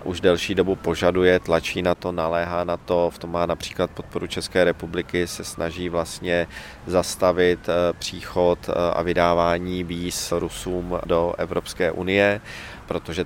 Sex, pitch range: male, 90-105 Hz